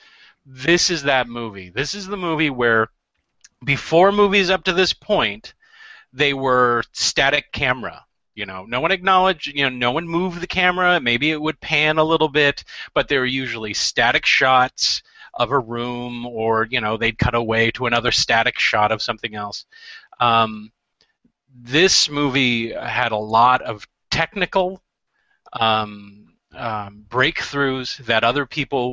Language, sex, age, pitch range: English, male, 30-49, 115-160 Hz